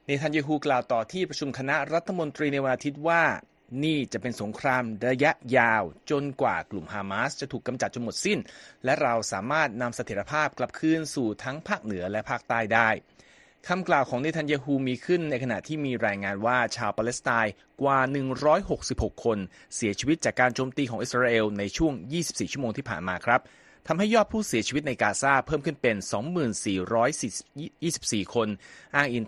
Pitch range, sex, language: 115-150 Hz, male, Thai